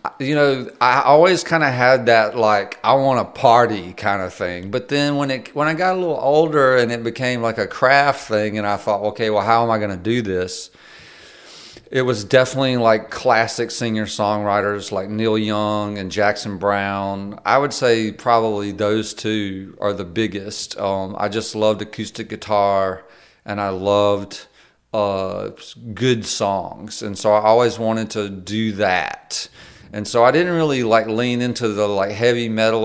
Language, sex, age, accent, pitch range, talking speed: English, male, 40-59, American, 105-120 Hz, 180 wpm